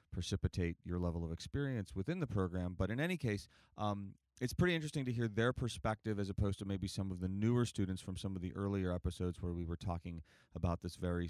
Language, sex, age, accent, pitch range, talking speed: English, male, 30-49, American, 85-100 Hz, 225 wpm